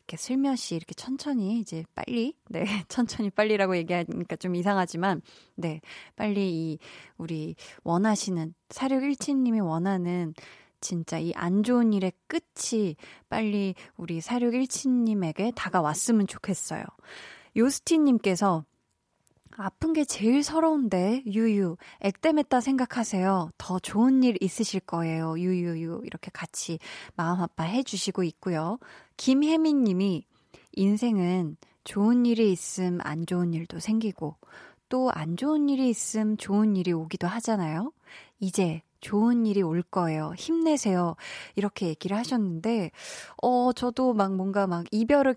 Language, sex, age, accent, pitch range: Korean, female, 20-39, native, 175-235 Hz